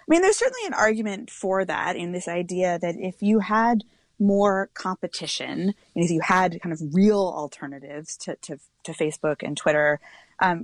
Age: 20-39